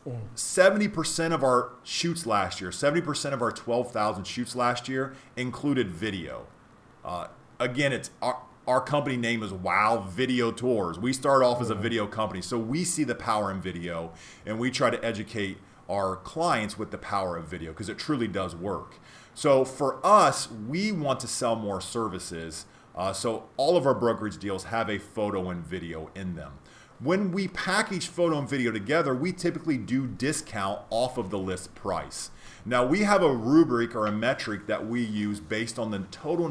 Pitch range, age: 105-140 Hz, 40-59